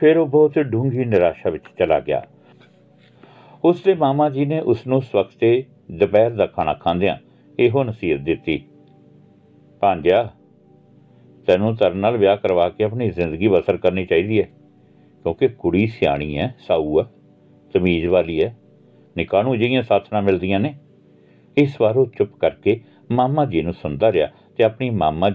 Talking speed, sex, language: 145 wpm, male, Punjabi